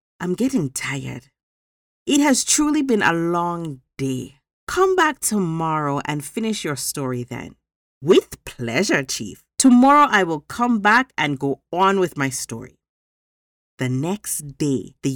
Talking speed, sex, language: 145 wpm, female, English